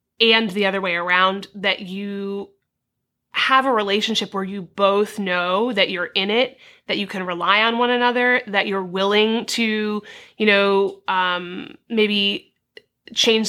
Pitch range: 190-220 Hz